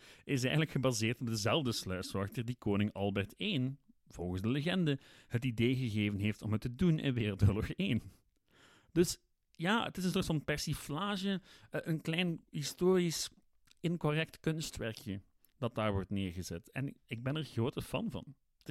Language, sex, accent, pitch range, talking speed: Dutch, male, Dutch, 105-150 Hz, 155 wpm